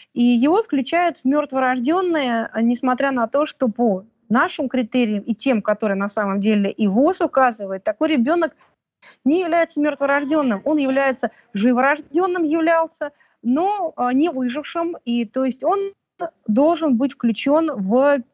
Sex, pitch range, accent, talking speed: female, 240-310 Hz, native, 135 wpm